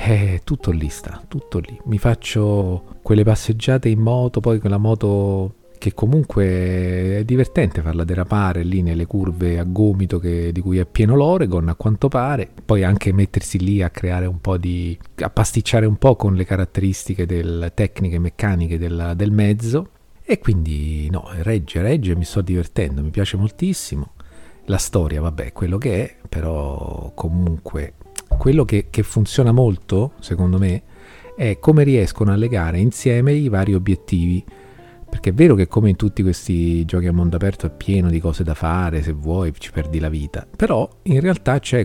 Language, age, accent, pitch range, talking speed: Italian, 40-59, native, 85-115 Hz, 175 wpm